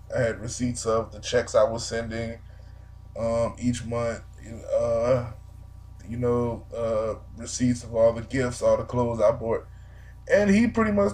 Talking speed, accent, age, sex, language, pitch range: 160 wpm, American, 20-39, male, English, 105-125 Hz